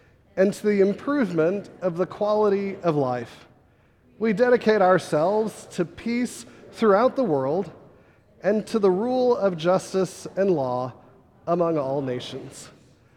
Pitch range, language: 140-200 Hz, English